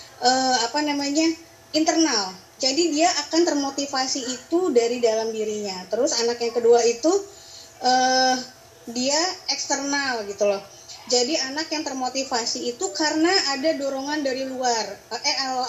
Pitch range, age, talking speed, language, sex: 245-315 Hz, 20-39, 125 wpm, Indonesian, female